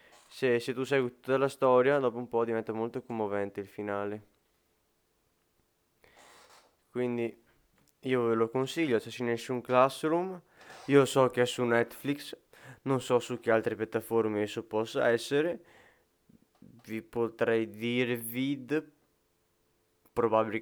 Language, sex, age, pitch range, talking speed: Italian, male, 20-39, 110-130 Hz, 120 wpm